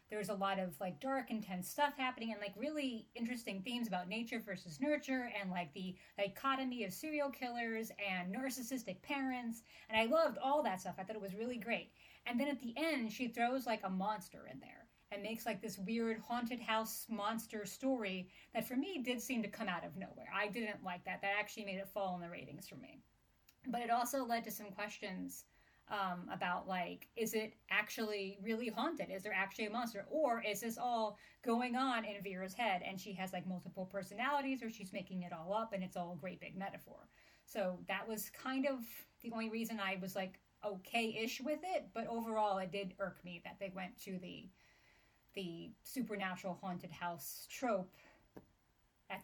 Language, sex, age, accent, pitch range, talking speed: English, female, 30-49, American, 190-235 Hz, 200 wpm